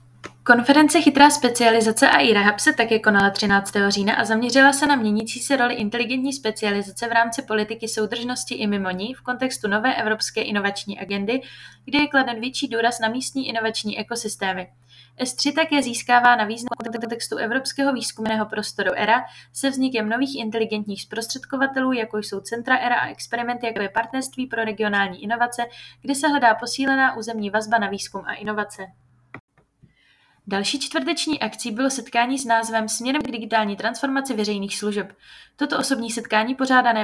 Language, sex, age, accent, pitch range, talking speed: Czech, female, 20-39, native, 210-260 Hz, 155 wpm